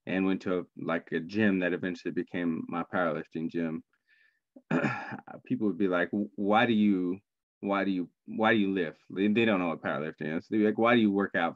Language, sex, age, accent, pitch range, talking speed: English, male, 20-39, American, 90-105 Hz, 210 wpm